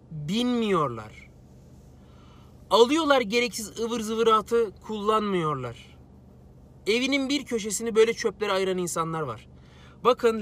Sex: male